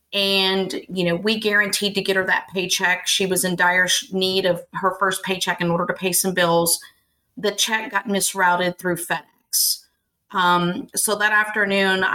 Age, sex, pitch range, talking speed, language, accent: 30-49, female, 175-200 Hz, 175 wpm, English, American